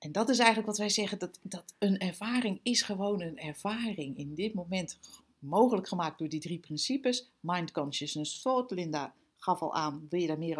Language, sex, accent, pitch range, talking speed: Dutch, female, Dutch, 175-215 Hz, 200 wpm